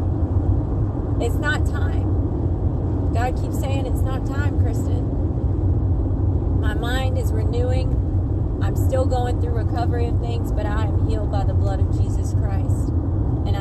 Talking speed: 140 wpm